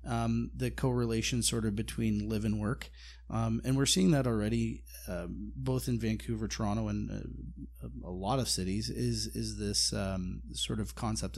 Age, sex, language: 30-49, male, English